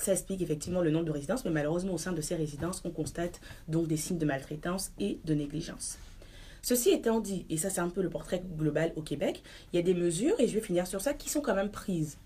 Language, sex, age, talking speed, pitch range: French, female, 30-49, 260 wpm, 155-190 Hz